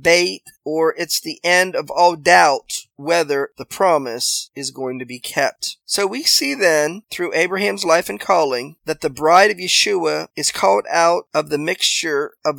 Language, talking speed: English, 175 wpm